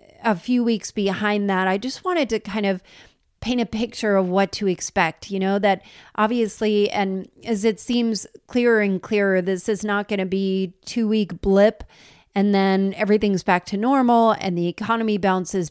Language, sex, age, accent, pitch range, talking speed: English, female, 30-49, American, 185-220 Hz, 180 wpm